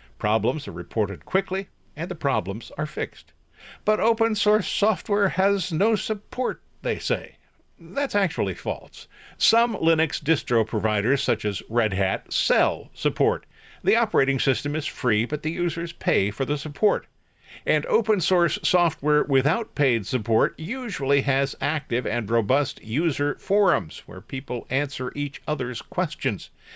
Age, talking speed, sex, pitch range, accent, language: 50-69, 140 wpm, male, 115-165 Hz, American, English